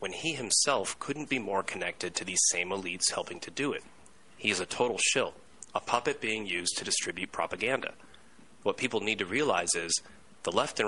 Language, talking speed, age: English, 200 wpm, 30-49